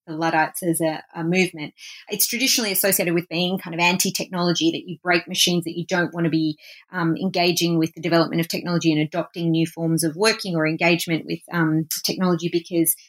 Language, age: English, 30-49